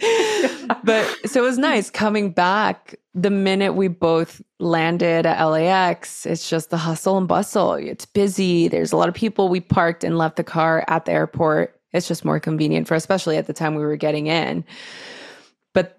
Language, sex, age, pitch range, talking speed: English, female, 20-39, 165-200 Hz, 190 wpm